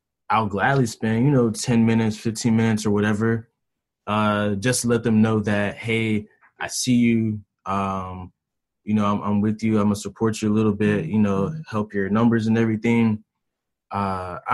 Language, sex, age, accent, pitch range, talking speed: English, male, 20-39, American, 100-115 Hz, 185 wpm